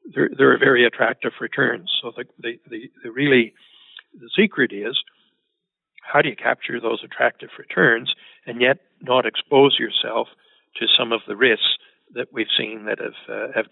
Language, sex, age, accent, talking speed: English, male, 60-79, American, 170 wpm